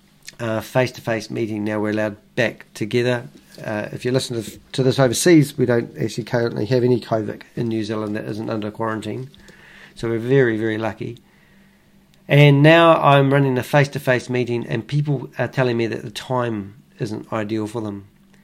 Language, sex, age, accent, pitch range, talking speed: English, male, 40-59, Australian, 115-145 Hz, 175 wpm